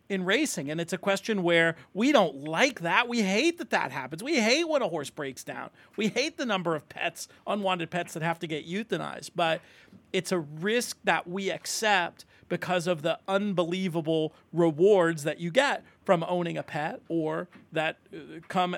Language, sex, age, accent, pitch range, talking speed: English, male, 40-59, American, 165-195 Hz, 185 wpm